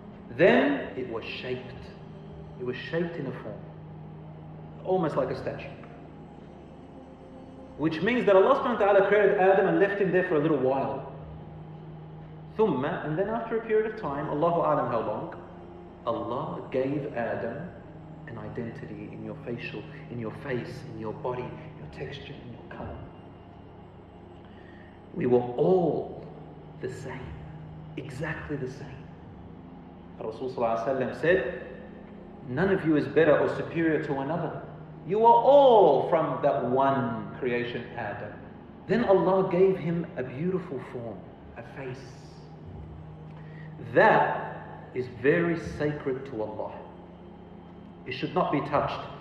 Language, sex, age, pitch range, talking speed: English, male, 40-59, 120-170 Hz, 135 wpm